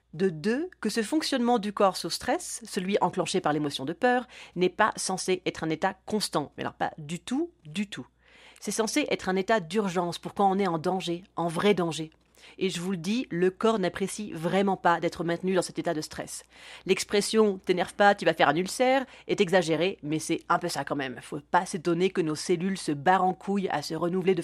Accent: French